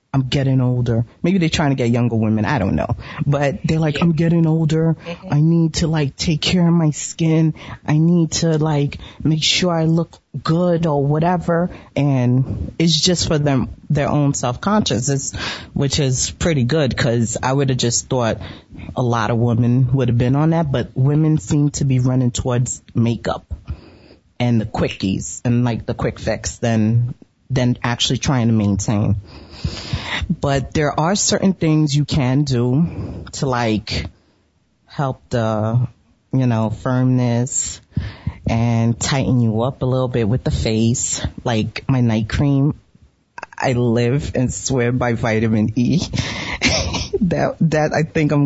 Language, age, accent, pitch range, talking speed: English, 30-49, American, 115-150 Hz, 160 wpm